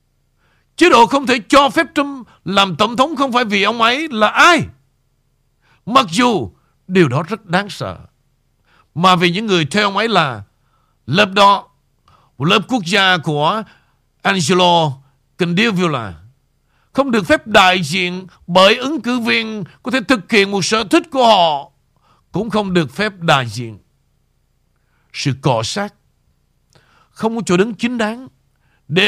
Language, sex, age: Vietnamese, male, 60-79